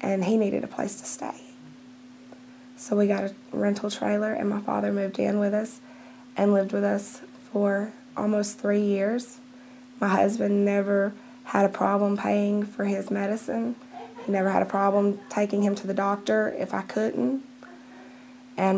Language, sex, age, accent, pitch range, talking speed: English, female, 20-39, American, 200-250 Hz, 165 wpm